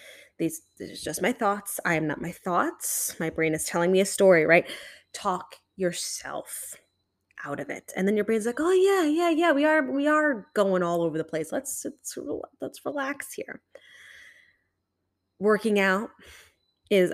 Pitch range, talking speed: 175-205 Hz, 175 wpm